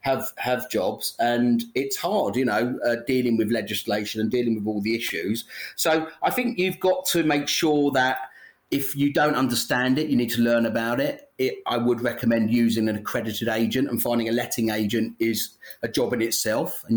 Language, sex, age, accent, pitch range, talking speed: English, male, 30-49, British, 110-135 Hz, 200 wpm